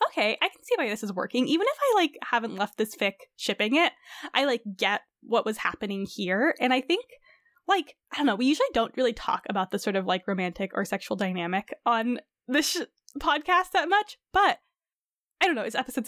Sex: female